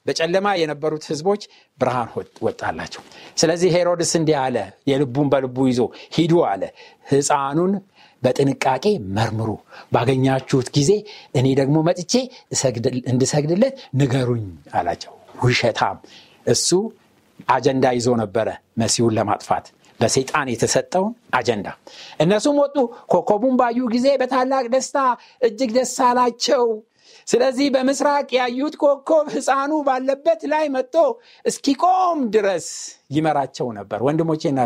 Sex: male